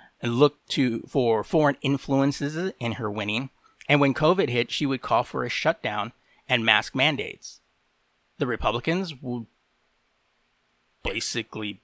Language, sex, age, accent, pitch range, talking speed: English, male, 30-49, American, 110-145 Hz, 130 wpm